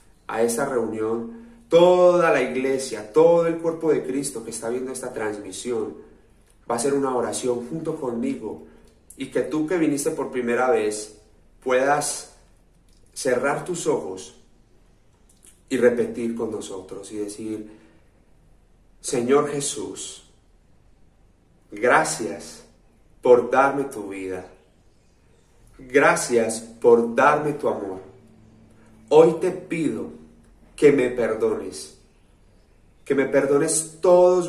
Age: 30-49